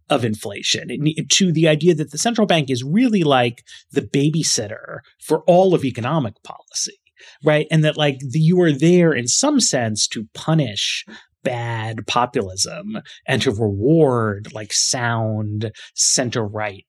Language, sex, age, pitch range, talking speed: English, male, 30-49, 115-155 Hz, 140 wpm